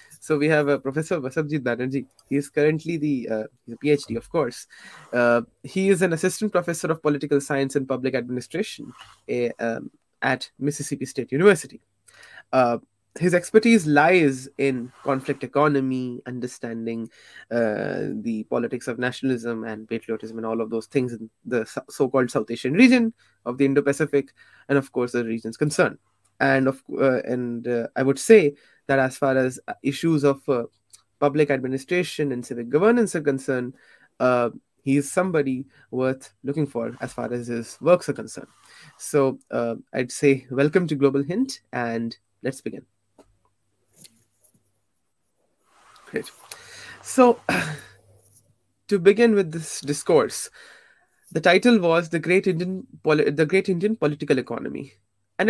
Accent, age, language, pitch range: Indian, 20-39, English, 120-160 Hz